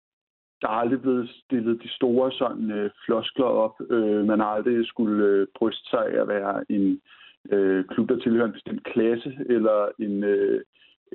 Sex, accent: male, native